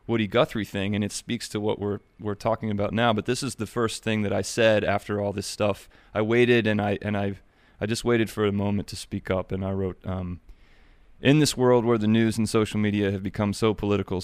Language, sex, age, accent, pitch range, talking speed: English, male, 30-49, American, 95-110 Hz, 245 wpm